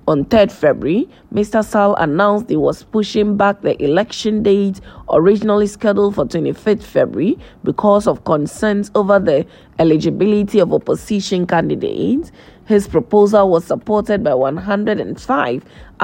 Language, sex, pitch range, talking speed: English, female, 200-215 Hz, 125 wpm